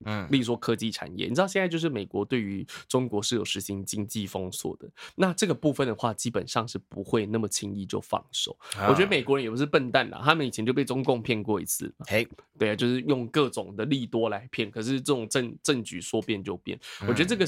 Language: Chinese